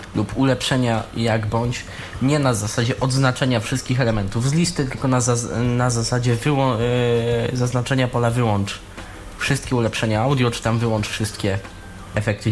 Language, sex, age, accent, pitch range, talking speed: Polish, male, 20-39, native, 105-130 Hz, 130 wpm